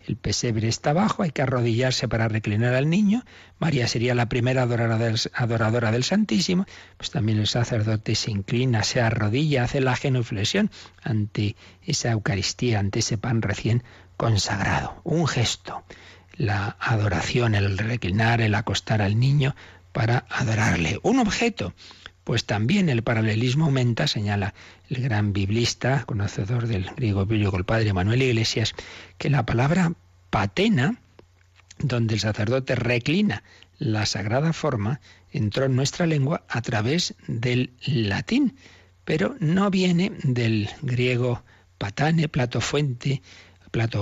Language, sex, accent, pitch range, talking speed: Spanish, male, Spanish, 105-145 Hz, 130 wpm